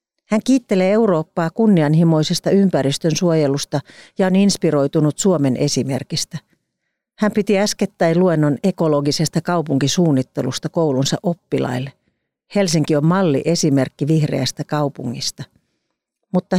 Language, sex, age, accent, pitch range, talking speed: Finnish, female, 40-59, native, 145-180 Hz, 90 wpm